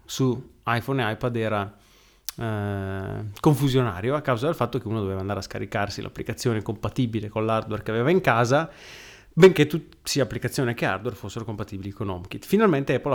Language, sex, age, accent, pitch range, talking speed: Italian, male, 30-49, native, 105-135 Hz, 165 wpm